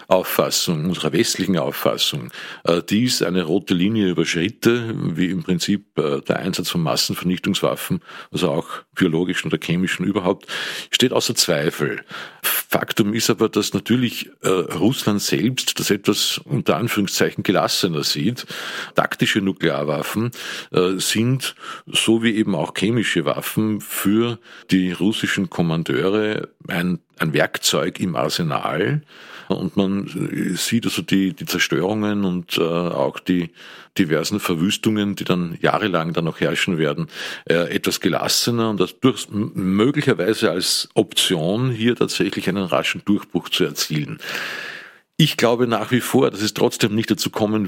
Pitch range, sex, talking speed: 90-115 Hz, male, 130 wpm